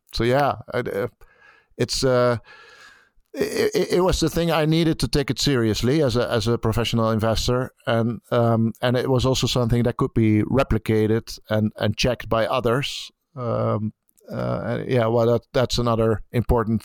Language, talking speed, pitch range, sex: English, 160 wpm, 110-130 Hz, male